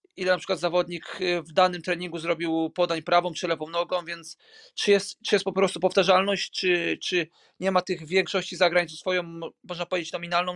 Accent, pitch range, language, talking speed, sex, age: native, 170-190 Hz, Polish, 180 wpm, male, 40-59